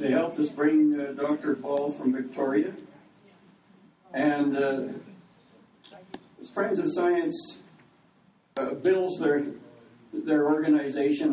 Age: 60-79